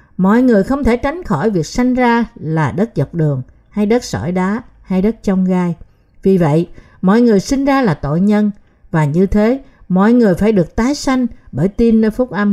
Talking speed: 210 wpm